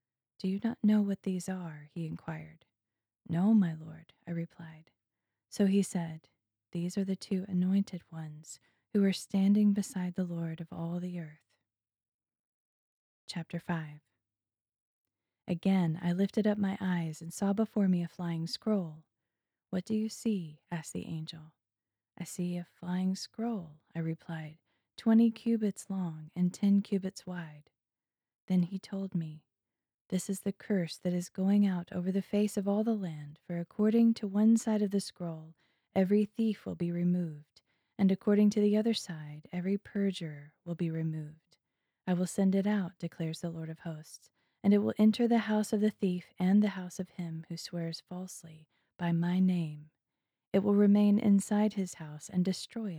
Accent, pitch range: American, 160-200 Hz